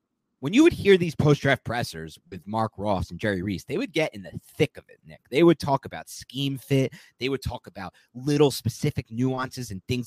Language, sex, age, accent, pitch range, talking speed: English, male, 30-49, American, 100-130 Hz, 225 wpm